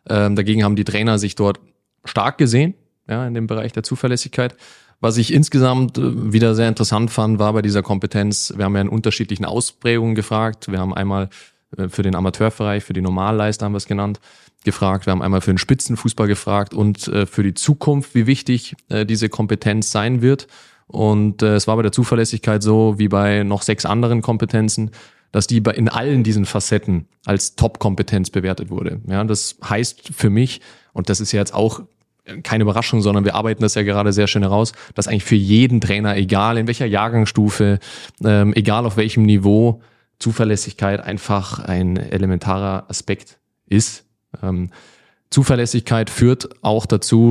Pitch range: 100-115 Hz